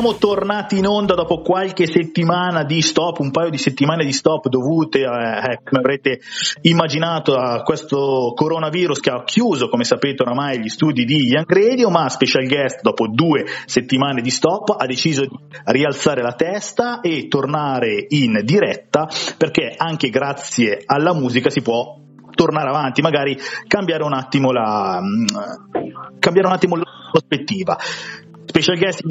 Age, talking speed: 30-49, 140 wpm